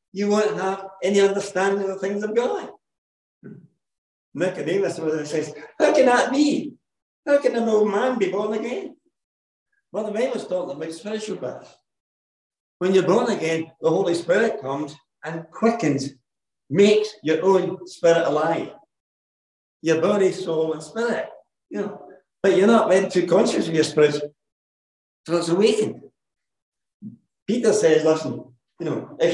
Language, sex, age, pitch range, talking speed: English, male, 60-79, 155-215 Hz, 145 wpm